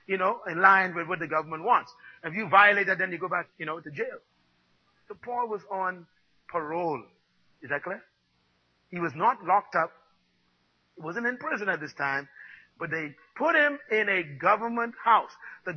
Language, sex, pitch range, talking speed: English, male, 200-285 Hz, 190 wpm